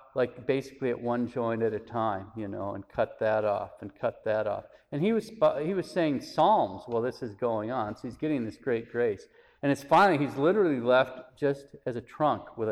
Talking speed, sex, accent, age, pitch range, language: 220 wpm, male, American, 50-69, 110-140 Hz, English